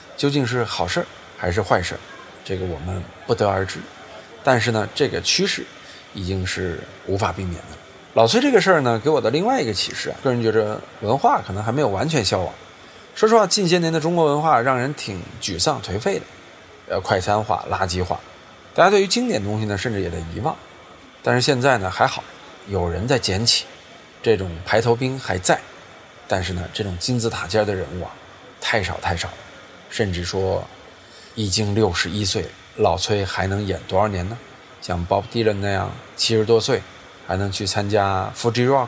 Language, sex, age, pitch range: Chinese, male, 20-39, 95-115 Hz